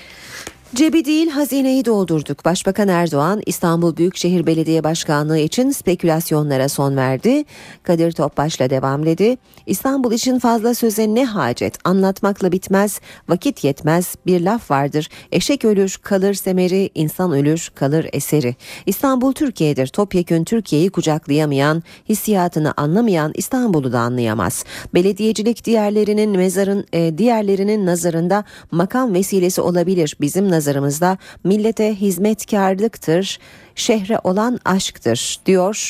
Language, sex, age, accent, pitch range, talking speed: Turkish, female, 40-59, native, 155-215 Hz, 110 wpm